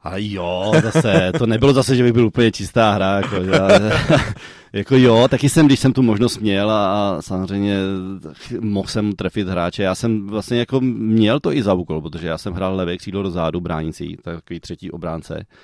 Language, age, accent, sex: Czech, 30-49, native, male